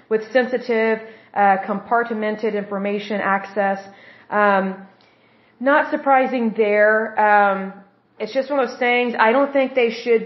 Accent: American